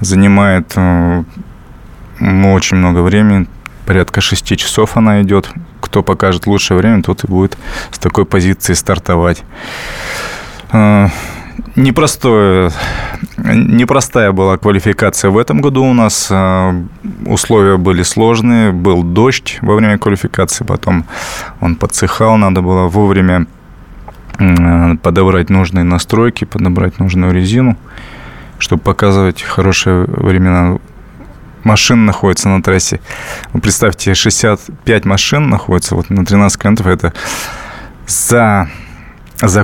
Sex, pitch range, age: male, 90-110 Hz, 20-39